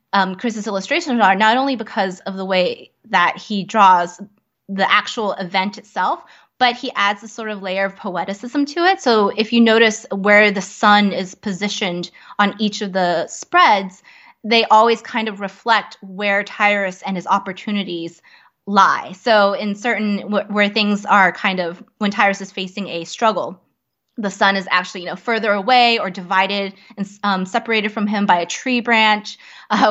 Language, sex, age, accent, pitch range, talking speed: English, female, 20-39, American, 190-225 Hz, 175 wpm